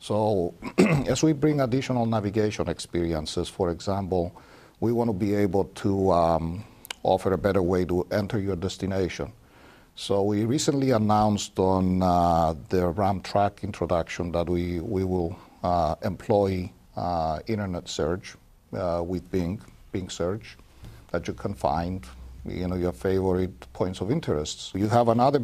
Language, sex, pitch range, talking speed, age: English, male, 90-105 Hz, 145 wpm, 60-79